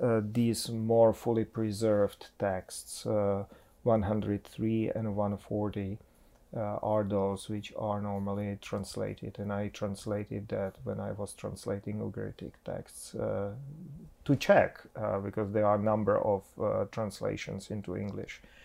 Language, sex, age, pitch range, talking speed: English, male, 40-59, 100-115 Hz, 130 wpm